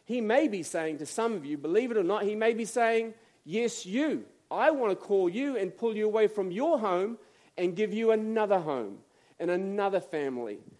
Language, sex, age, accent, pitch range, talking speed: English, male, 40-59, Australian, 160-235 Hz, 210 wpm